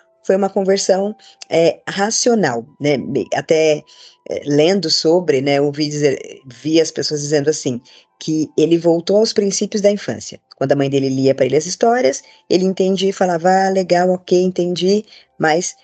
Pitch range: 150-215 Hz